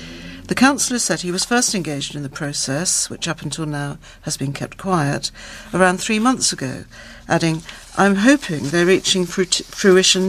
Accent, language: British, English